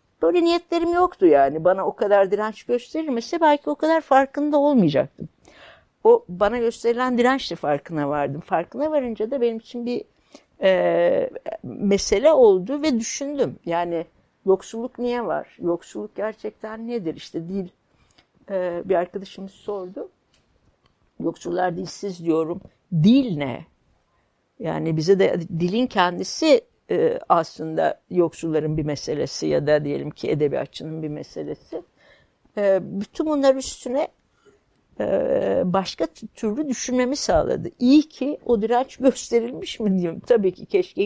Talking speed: 120 wpm